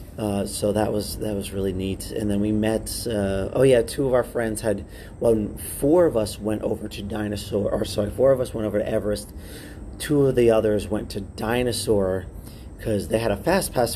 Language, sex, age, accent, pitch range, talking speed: English, male, 40-59, American, 100-110 Hz, 215 wpm